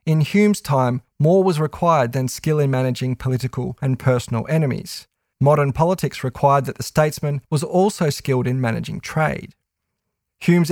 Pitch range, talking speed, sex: 130-165 Hz, 150 wpm, male